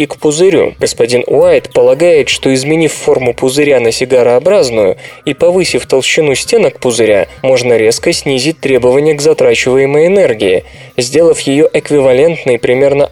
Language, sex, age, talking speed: Russian, male, 20-39, 130 wpm